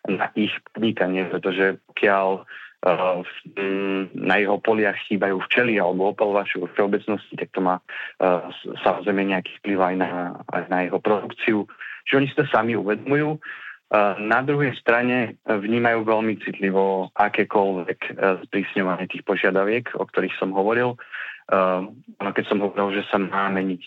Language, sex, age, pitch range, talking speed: Slovak, male, 30-49, 95-110 Hz, 140 wpm